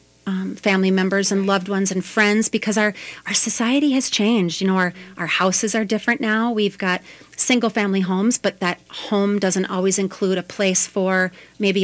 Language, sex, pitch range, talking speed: English, female, 185-210 Hz, 190 wpm